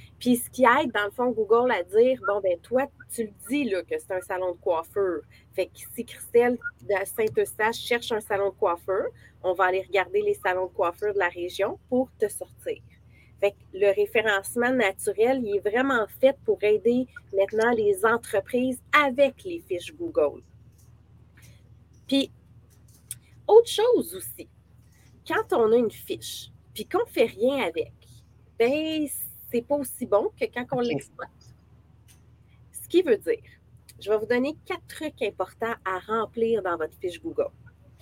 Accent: Canadian